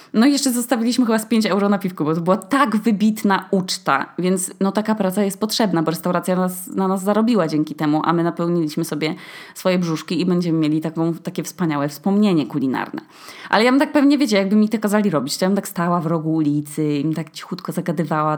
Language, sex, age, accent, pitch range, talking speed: Polish, female, 20-39, native, 160-210 Hz, 215 wpm